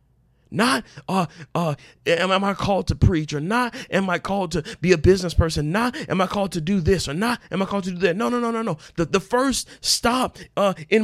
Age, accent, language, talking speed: 40-59, American, English, 240 wpm